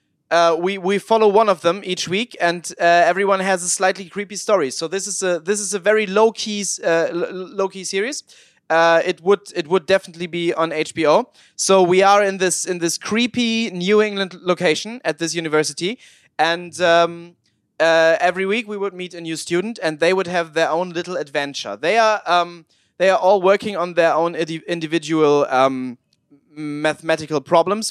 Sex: male